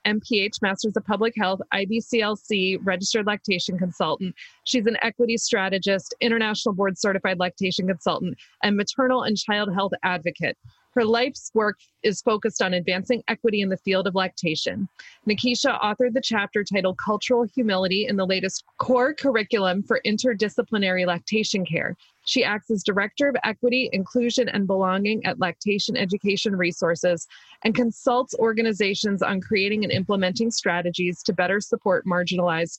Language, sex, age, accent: English, female, 30-49, American